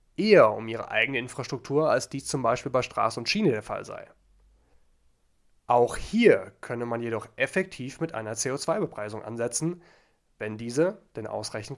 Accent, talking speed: German, 155 wpm